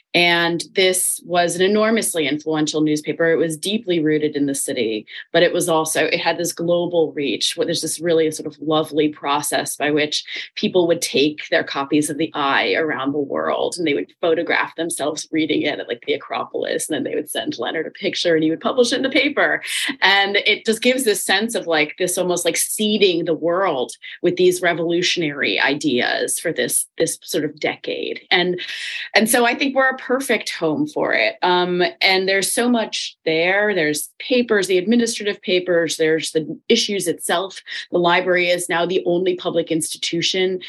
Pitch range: 155-190 Hz